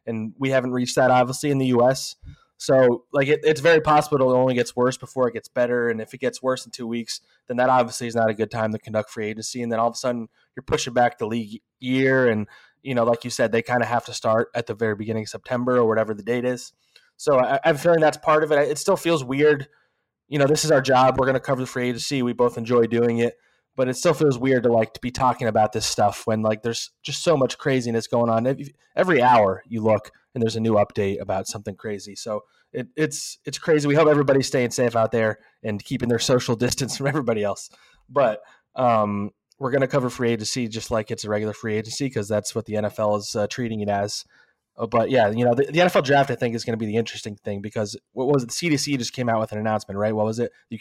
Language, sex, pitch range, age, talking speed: English, male, 110-130 Hz, 20-39, 260 wpm